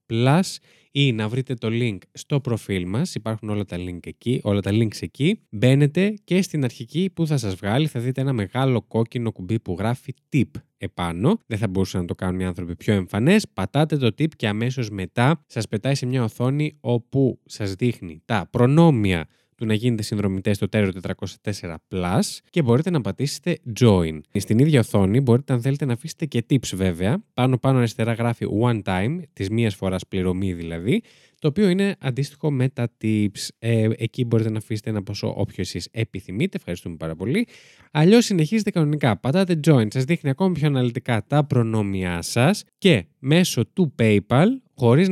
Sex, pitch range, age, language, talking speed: male, 100-140 Hz, 20-39, Greek, 175 wpm